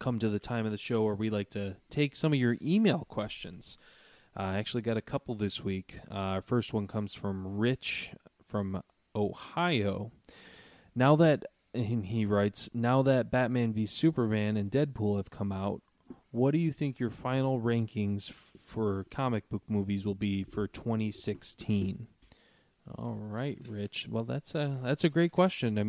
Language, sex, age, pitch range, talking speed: English, male, 20-39, 100-120 Hz, 175 wpm